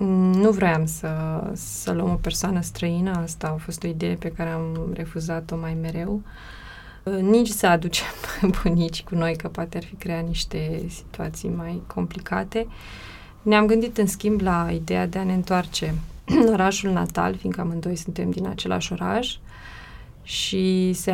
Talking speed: 155 wpm